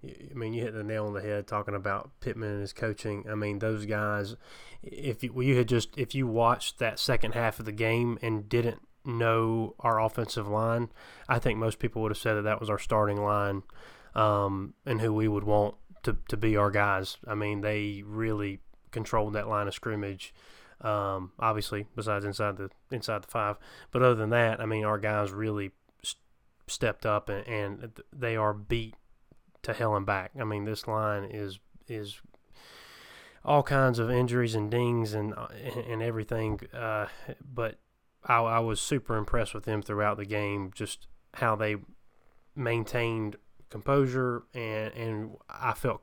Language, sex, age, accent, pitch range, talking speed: English, male, 20-39, American, 105-120 Hz, 175 wpm